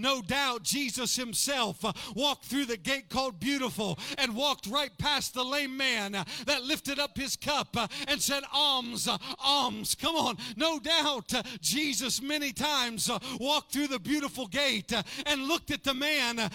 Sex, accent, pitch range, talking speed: male, American, 255-300 Hz, 155 wpm